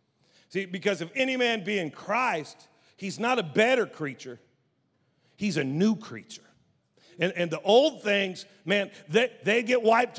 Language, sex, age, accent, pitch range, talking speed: English, male, 50-69, American, 170-220 Hz, 160 wpm